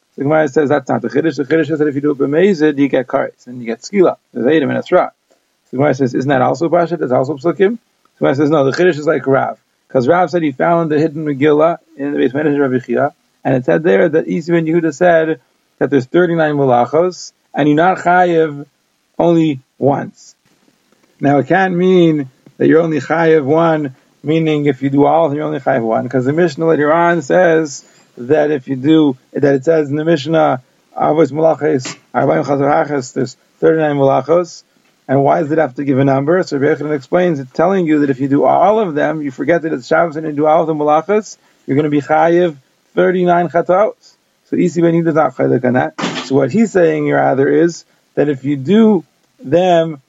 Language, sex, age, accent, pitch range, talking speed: English, male, 40-59, American, 145-170 Hz, 200 wpm